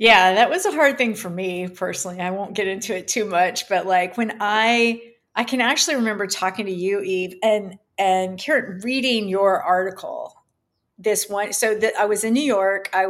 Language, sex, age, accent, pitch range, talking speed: English, female, 40-59, American, 185-225 Hz, 200 wpm